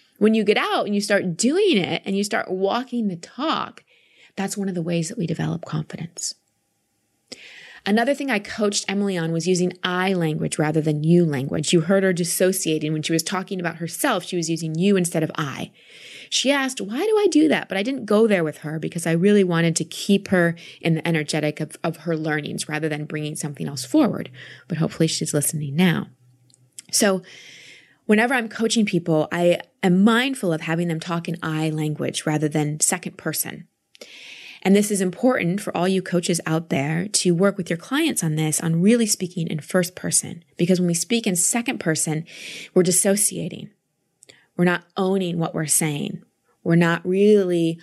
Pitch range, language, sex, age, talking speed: 165-200 Hz, English, female, 20-39, 195 wpm